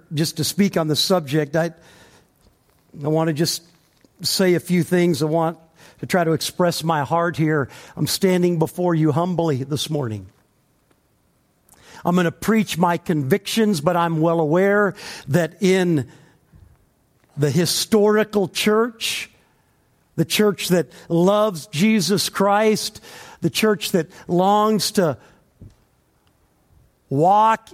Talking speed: 125 wpm